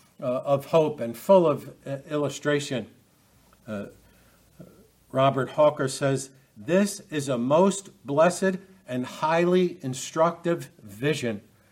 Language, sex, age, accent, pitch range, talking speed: English, male, 60-79, American, 130-175 Hz, 110 wpm